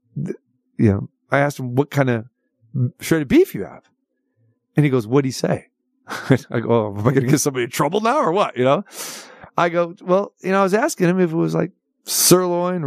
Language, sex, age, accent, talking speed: English, male, 40-59, American, 230 wpm